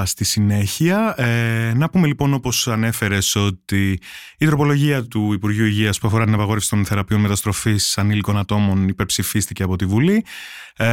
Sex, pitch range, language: male, 110-155 Hz, Greek